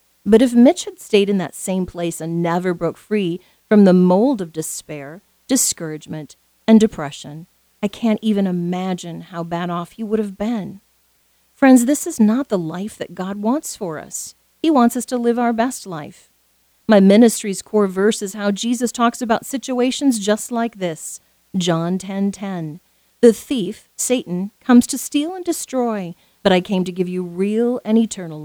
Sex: female